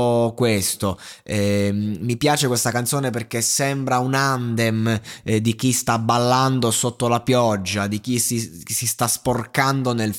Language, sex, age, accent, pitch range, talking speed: Italian, male, 20-39, native, 115-140 Hz, 145 wpm